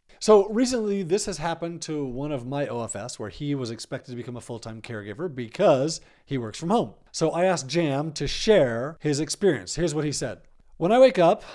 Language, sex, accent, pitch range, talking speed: English, male, American, 125-165 Hz, 210 wpm